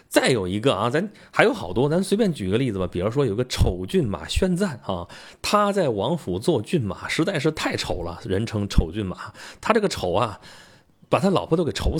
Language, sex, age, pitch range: Chinese, male, 30-49, 105-170 Hz